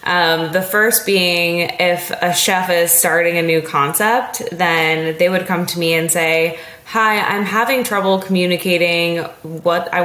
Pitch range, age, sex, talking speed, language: 160-185 Hz, 20-39, female, 160 wpm, English